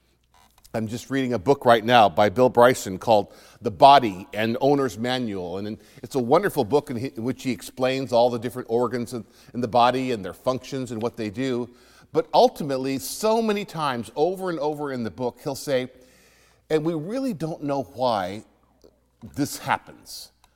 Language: English